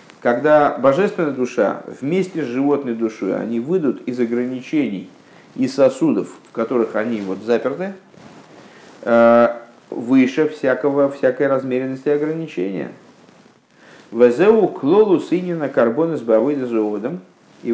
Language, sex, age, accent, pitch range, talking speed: Russian, male, 50-69, native, 120-155 Hz, 105 wpm